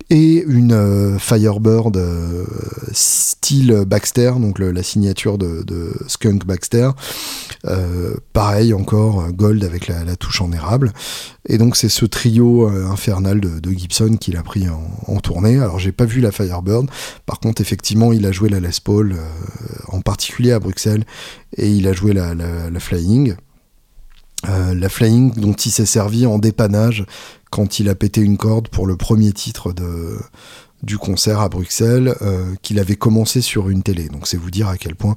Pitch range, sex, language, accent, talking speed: 95-115 Hz, male, French, French, 180 wpm